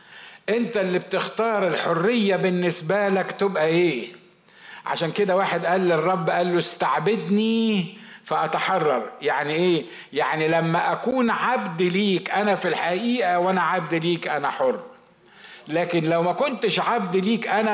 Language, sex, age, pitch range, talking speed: Arabic, male, 50-69, 180-230 Hz, 130 wpm